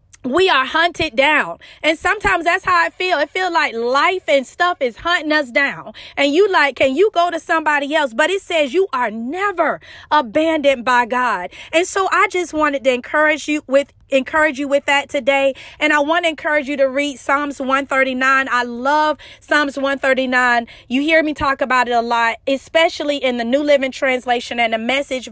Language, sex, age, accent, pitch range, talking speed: English, female, 30-49, American, 255-320 Hz, 195 wpm